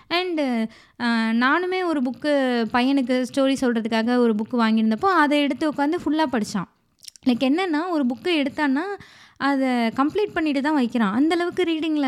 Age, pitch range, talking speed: 20-39, 230-290 Hz, 135 wpm